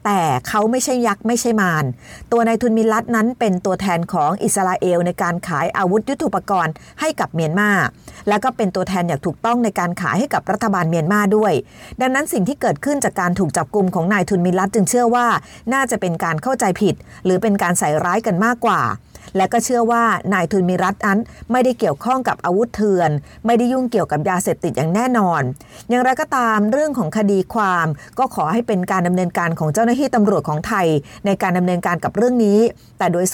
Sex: female